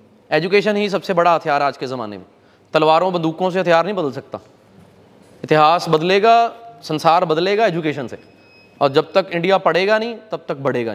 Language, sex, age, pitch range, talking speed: Punjabi, male, 20-39, 165-220 Hz, 170 wpm